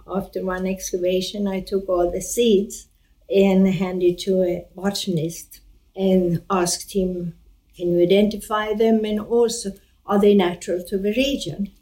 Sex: female